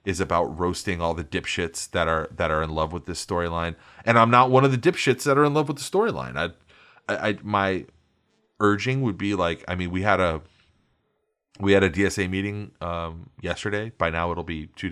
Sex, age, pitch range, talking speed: male, 30-49, 90-135 Hz, 215 wpm